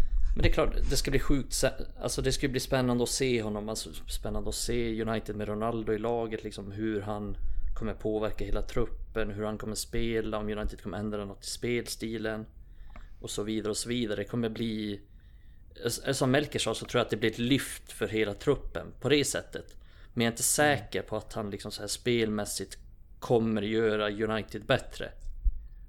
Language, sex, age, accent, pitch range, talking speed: Swedish, male, 30-49, native, 100-120 Hz, 195 wpm